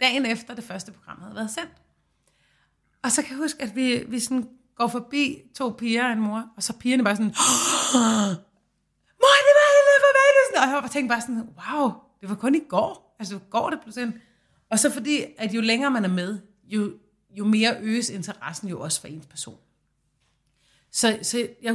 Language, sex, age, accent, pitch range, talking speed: Danish, female, 30-49, native, 195-240 Hz, 205 wpm